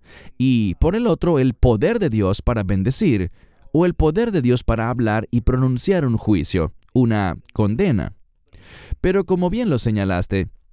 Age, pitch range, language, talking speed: 30-49, 90-125 Hz, English, 155 wpm